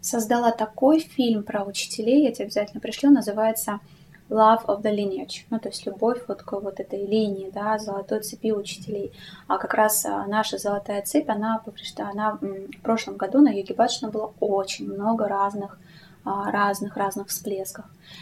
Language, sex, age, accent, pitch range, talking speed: Russian, female, 20-39, native, 200-230 Hz, 155 wpm